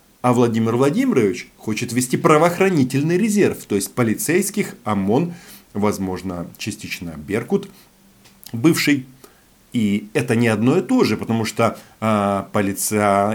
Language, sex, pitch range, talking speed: Russian, male, 95-125 Hz, 110 wpm